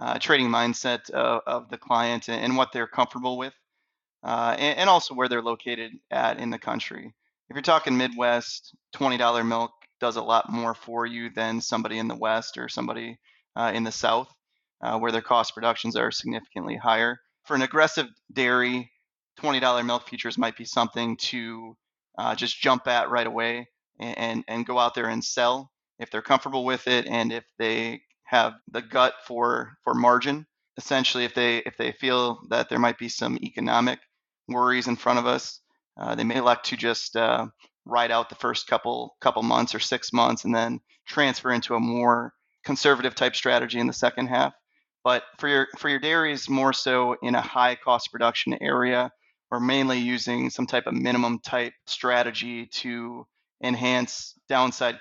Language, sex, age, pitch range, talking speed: English, male, 20-39, 115-125 Hz, 180 wpm